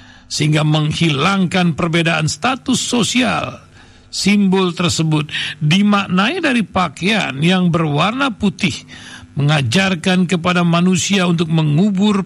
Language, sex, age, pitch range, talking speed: Indonesian, male, 60-79, 155-200 Hz, 90 wpm